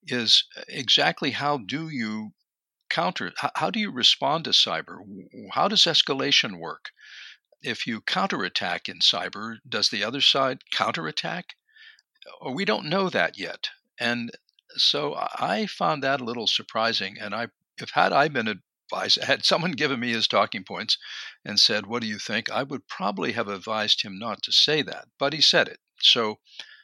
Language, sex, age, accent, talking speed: English, male, 60-79, American, 165 wpm